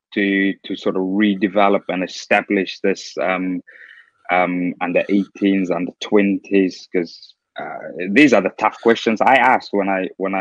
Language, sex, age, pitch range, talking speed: English, male, 20-39, 100-110 Hz, 140 wpm